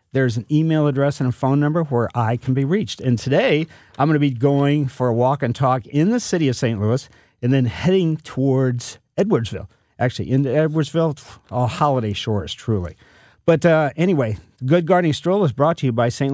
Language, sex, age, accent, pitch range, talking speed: English, male, 50-69, American, 125-160 Hz, 200 wpm